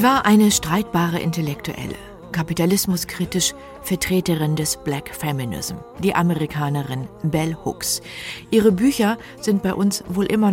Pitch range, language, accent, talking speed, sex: 155-205 Hz, German, German, 120 wpm, female